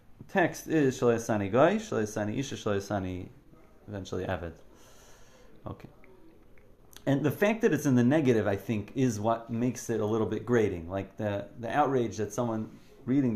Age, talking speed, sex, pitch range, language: 30-49, 155 wpm, male, 100-125 Hz, English